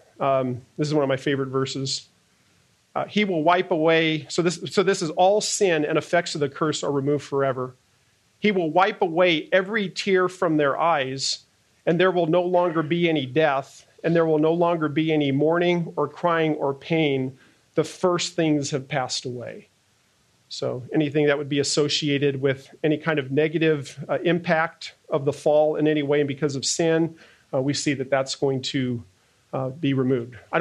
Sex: male